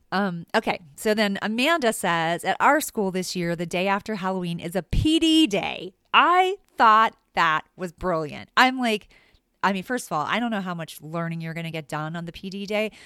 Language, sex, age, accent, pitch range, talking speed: English, female, 30-49, American, 160-210 Hz, 210 wpm